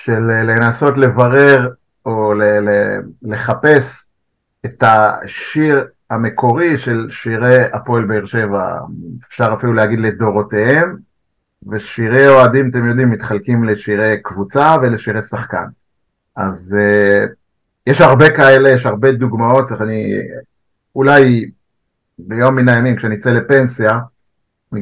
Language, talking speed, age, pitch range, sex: Hebrew, 110 wpm, 50-69, 110-135 Hz, male